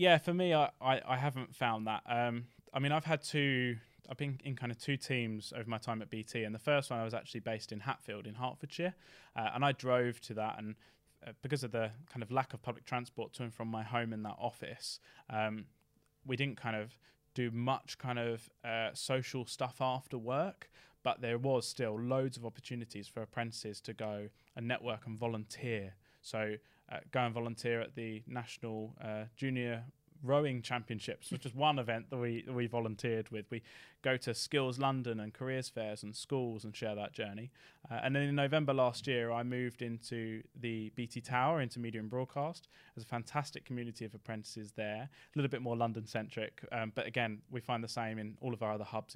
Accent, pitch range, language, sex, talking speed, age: British, 110-130 Hz, English, male, 210 wpm, 10-29